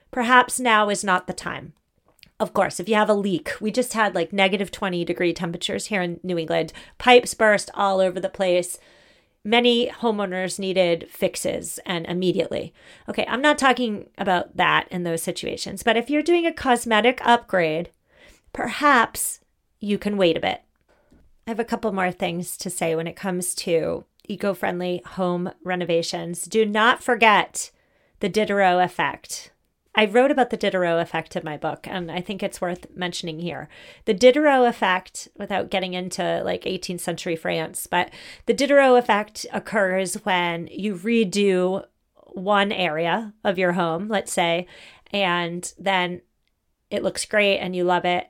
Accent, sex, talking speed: American, female, 160 wpm